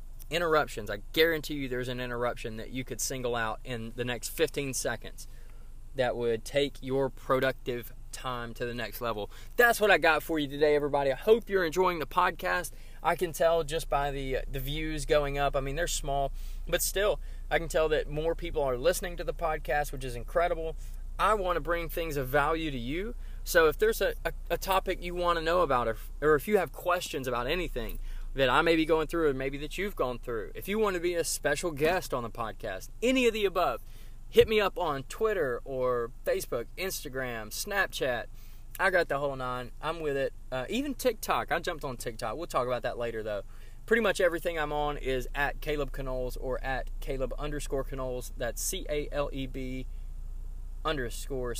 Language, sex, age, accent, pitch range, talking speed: English, male, 20-39, American, 125-170 Hz, 200 wpm